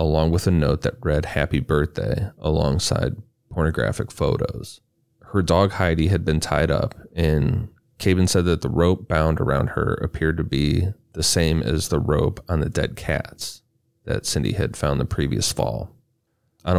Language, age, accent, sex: English, 30-49, American, male